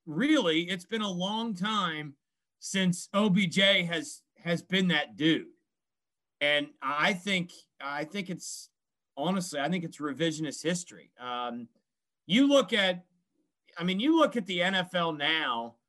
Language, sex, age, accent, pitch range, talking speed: English, male, 40-59, American, 165-225 Hz, 140 wpm